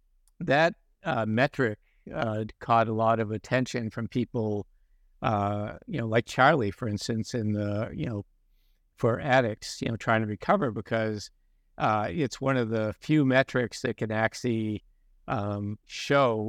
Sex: male